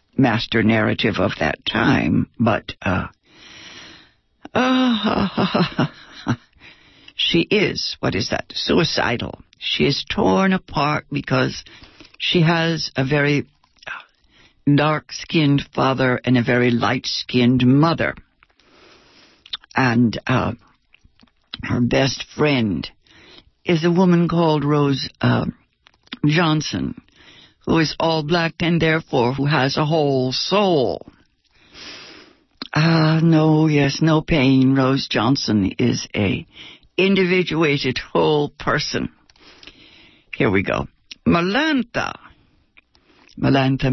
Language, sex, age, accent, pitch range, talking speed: English, female, 60-79, American, 125-170 Hz, 95 wpm